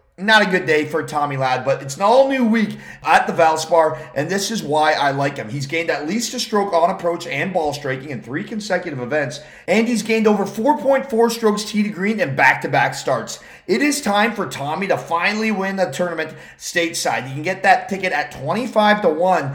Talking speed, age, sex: 210 wpm, 30-49, male